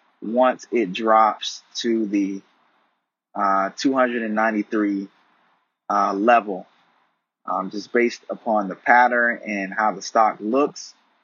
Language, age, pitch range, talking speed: English, 20-39, 100-115 Hz, 105 wpm